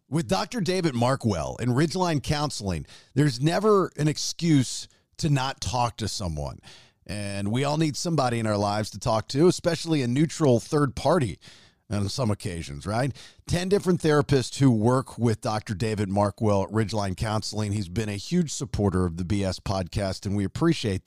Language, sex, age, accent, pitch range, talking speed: English, male, 40-59, American, 105-145 Hz, 170 wpm